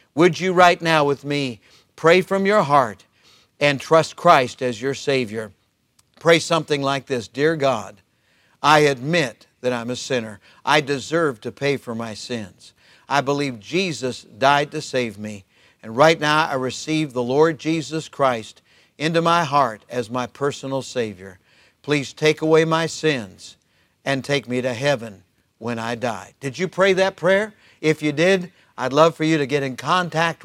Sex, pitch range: male, 130-165 Hz